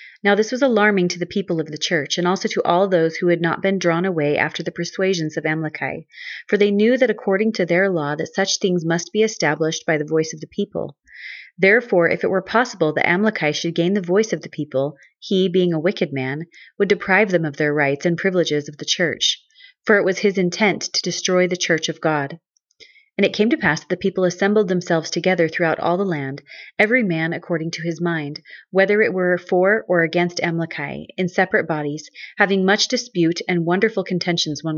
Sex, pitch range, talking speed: female, 160-200 Hz, 215 wpm